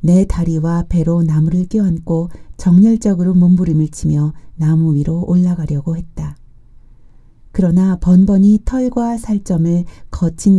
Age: 40-59